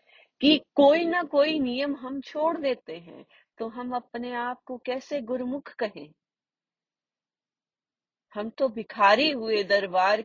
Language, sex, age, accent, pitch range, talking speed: Hindi, female, 30-49, native, 175-240 Hz, 130 wpm